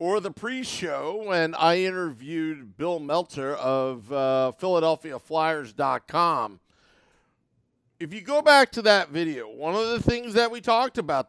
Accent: American